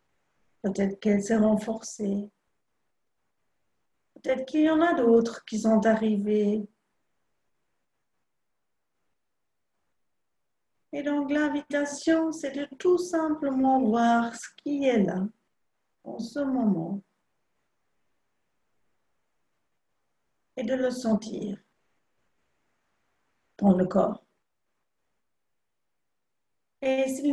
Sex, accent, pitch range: female, French, 210-265 Hz